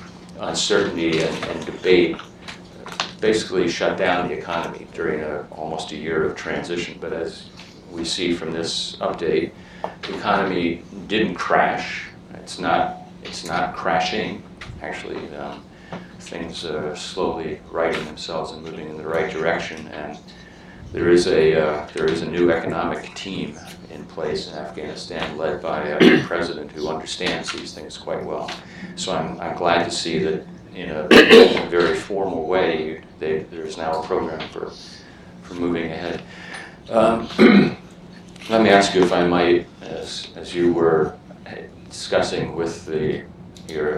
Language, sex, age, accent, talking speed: English, male, 40-59, American, 150 wpm